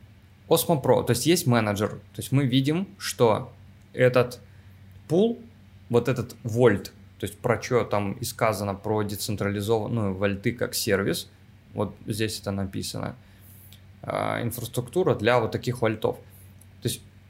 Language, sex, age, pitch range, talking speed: Russian, male, 20-39, 100-125 Hz, 135 wpm